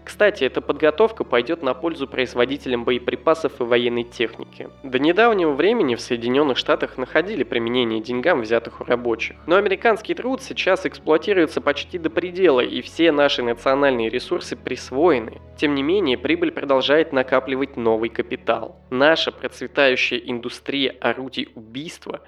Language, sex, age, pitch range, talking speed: Russian, male, 20-39, 120-160 Hz, 135 wpm